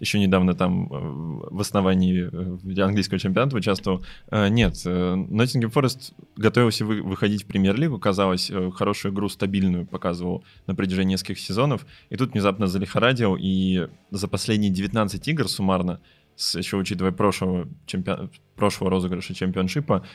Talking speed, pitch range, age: 120 wpm, 95-110 Hz, 20-39